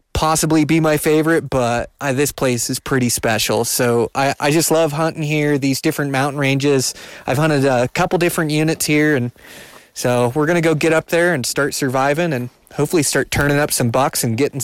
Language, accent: English, American